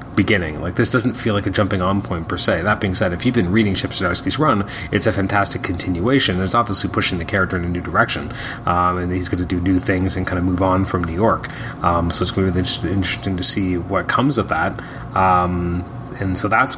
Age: 30-49